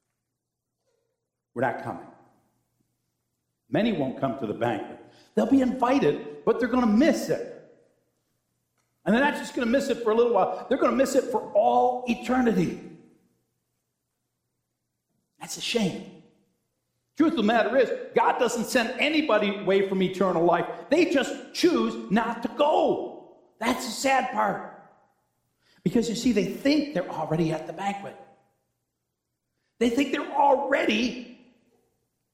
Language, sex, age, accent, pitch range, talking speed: English, male, 60-79, American, 175-265 Hz, 145 wpm